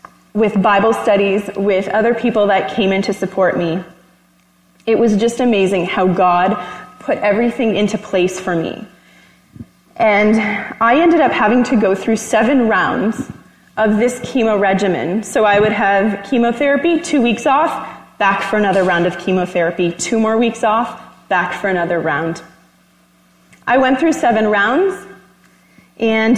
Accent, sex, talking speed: American, female, 150 wpm